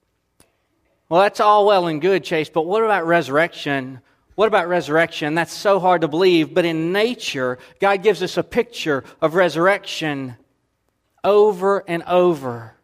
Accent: American